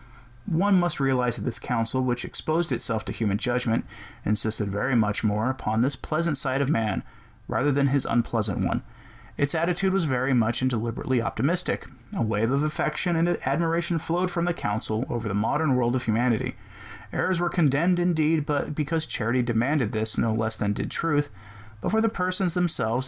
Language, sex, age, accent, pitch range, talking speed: English, male, 20-39, American, 115-155 Hz, 180 wpm